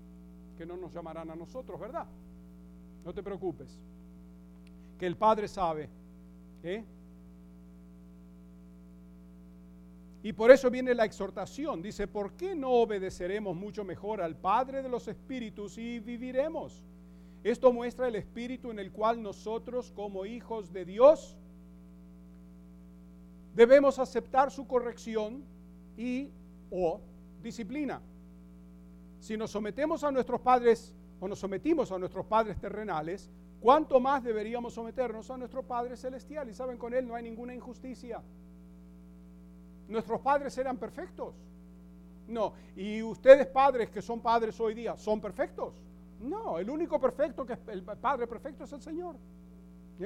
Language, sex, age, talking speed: English, male, 50-69, 135 wpm